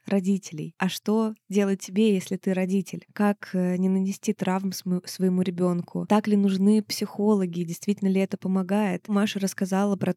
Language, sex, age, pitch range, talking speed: Russian, female, 20-39, 180-200 Hz, 150 wpm